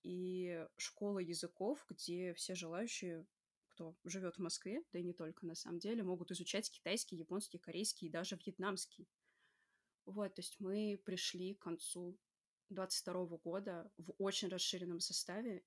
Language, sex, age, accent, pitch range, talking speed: Russian, female, 20-39, native, 180-205 Hz, 145 wpm